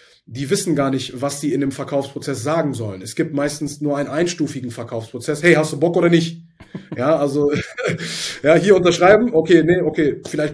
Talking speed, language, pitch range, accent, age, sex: 190 wpm, German, 140-155 Hz, German, 30-49, male